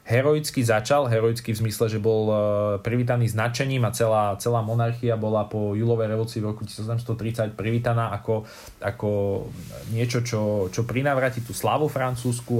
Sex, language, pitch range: male, Slovak, 110-125 Hz